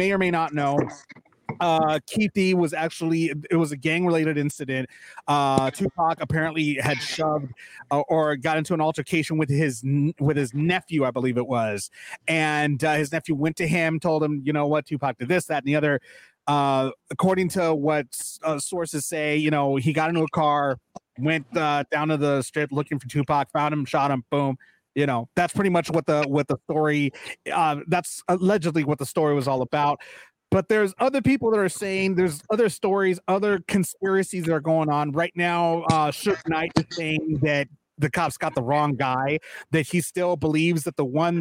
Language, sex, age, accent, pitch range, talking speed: English, male, 30-49, American, 145-170 Hz, 200 wpm